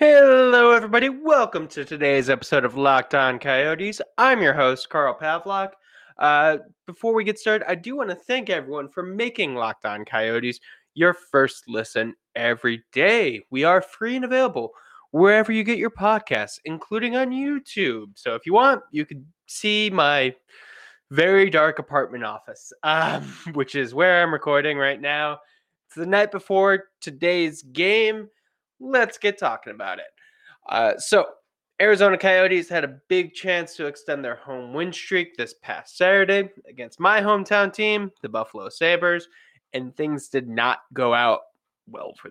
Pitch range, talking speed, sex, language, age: 135-200 Hz, 160 wpm, male, English, 20-39